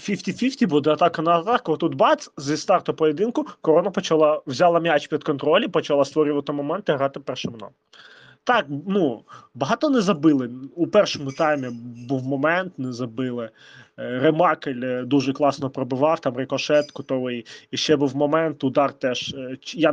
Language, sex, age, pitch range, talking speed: Ukrainian, male, 20-39, 145-190 Hz, 145 wpm